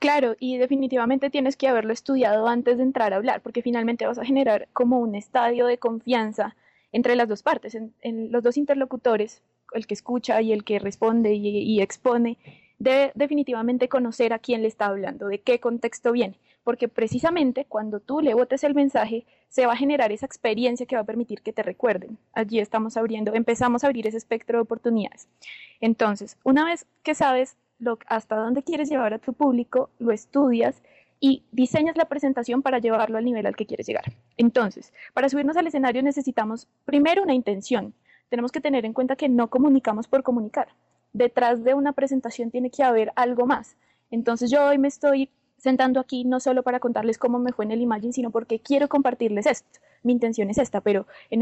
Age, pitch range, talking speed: 20-39, 225-265 Hz, 195 wpm